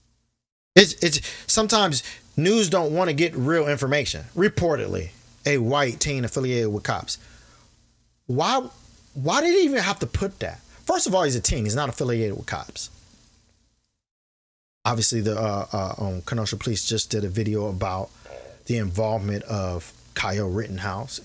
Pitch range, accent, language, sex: 105-135 Hz, American, English, male